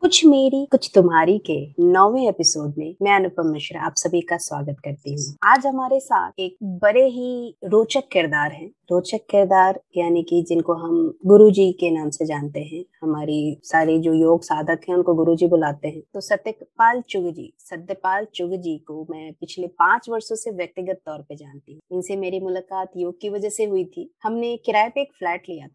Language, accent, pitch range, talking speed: English, Indian, 165-220 Hz, 125 wpm